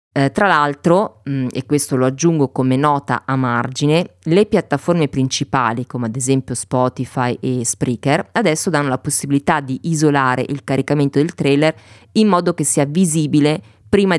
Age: 30-49